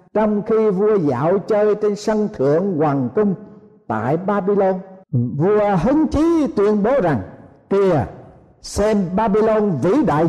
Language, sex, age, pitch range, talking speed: Vietnamese, male, 60-79, 165-230 Hz, 135 wpm